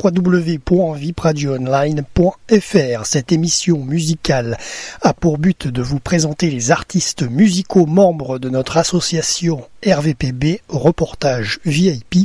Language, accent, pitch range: French, French, 155-190 Hz